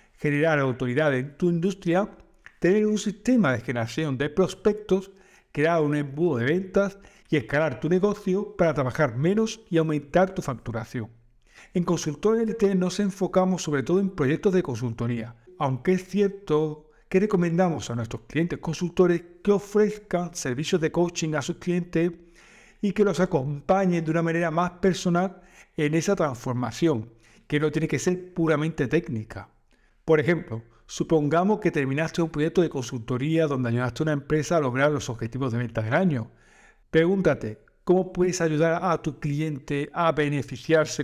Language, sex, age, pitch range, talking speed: Spanish, male, 50-69, 140-185 Hz, 155 wpm